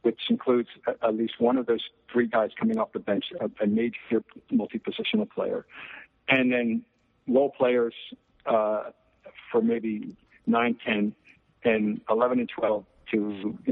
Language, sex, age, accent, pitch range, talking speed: English, male, 60-79, American, 115-155 Hz, 140 wpm